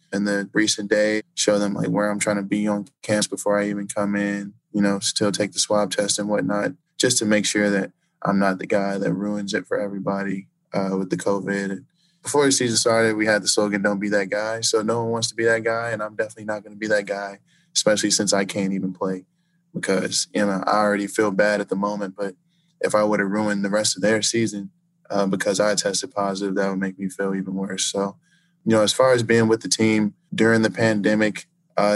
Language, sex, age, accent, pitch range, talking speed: English, male, 20-39, American, 100-110 Hz, 240 wpm